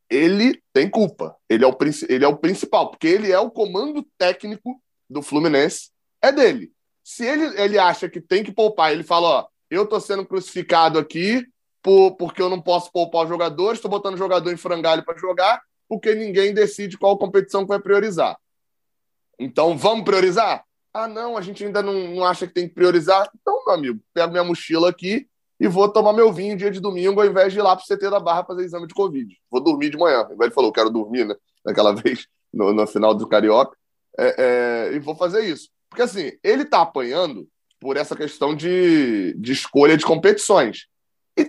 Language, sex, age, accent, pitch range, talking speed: Portuguese, male, 20-39, Brazilian, 170-220 Hz, 200 wpm